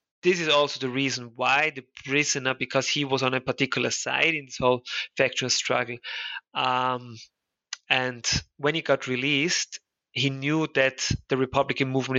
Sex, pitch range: male, 130-150 Hz